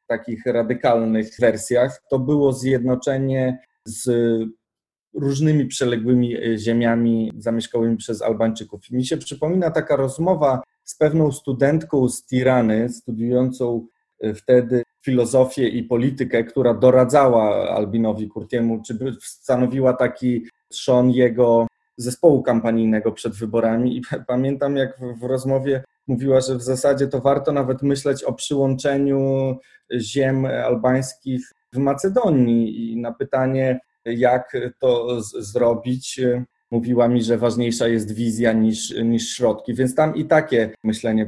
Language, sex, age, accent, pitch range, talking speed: Polish, male, 20-39, native, 115-135 Hz, 120 wpm